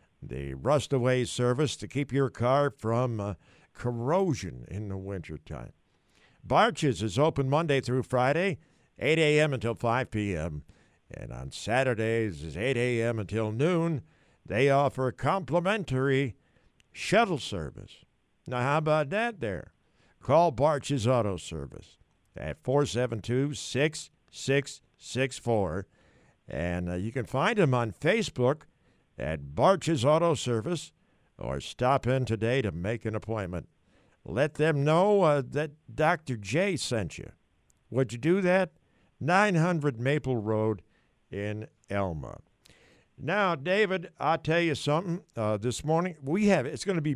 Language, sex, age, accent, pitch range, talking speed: English, male, 50-69, American, 110-155 Hz, 130 wpm